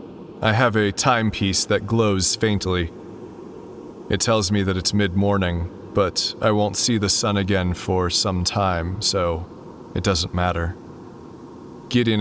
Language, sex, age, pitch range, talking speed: English, male, 30-49, 95-110 Hz, 140 wpm